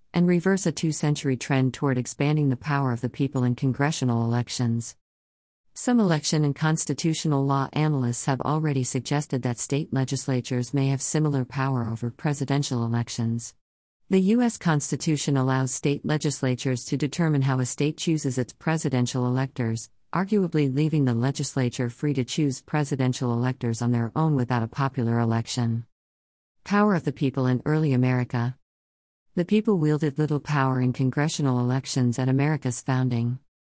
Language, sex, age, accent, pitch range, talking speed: English, female, 50-69, American, 125-150 Hz, 145 wpm